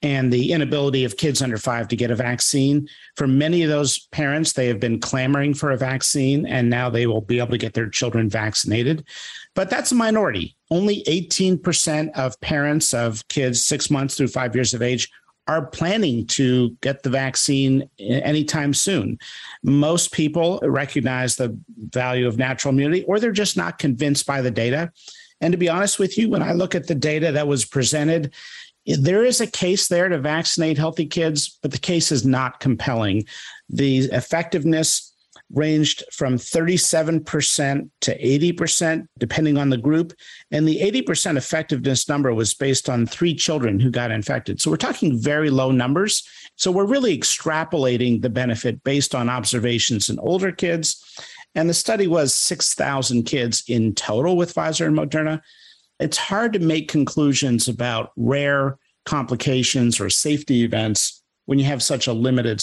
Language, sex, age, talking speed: English, male, 50-69, 170 wpm